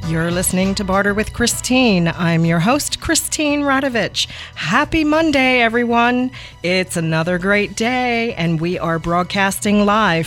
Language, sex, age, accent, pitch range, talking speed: English, female, 40-59, American, 165-215 Hz, 135 wpm